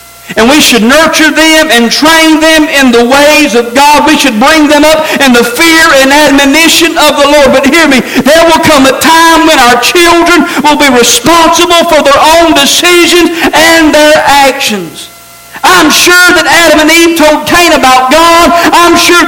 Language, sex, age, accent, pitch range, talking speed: English, male, 50-69, American, 280-340 Hz, 185 wpm